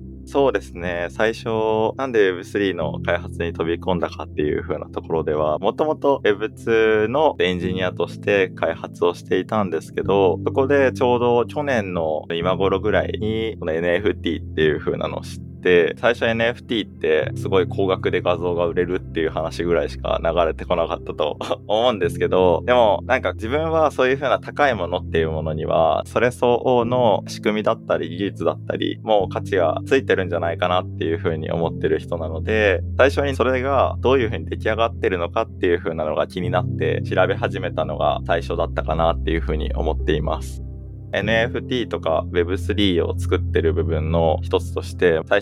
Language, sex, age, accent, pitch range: Japanese, male, 20-39, native, 85-110 Hz